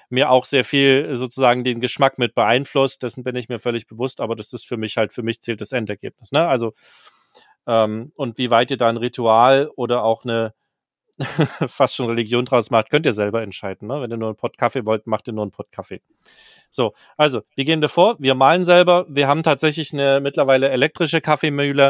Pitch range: 110-135 Hz